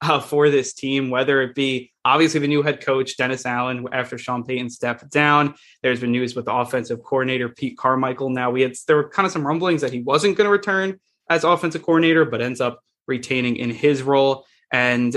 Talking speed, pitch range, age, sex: 215 wpm, 125-145 Hz, 20-39, male